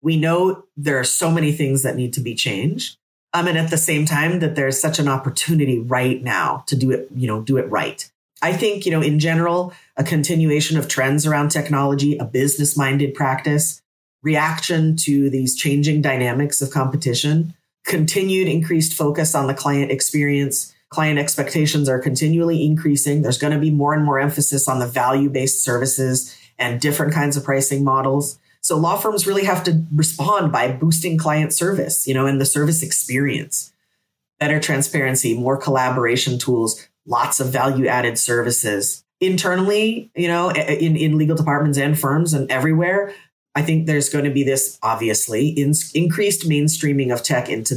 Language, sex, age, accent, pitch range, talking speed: English, female, 30-49, American, 135-160 Hz, 170 wpm